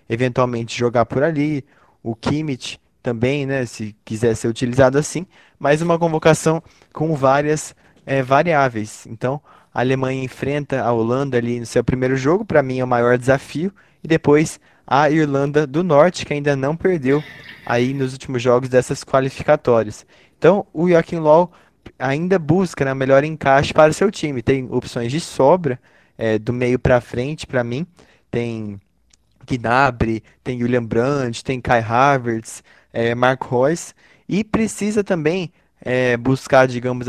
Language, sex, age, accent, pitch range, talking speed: Portuguese, male, 20-39, Brazilian, 125-155 Hz, 150 wpm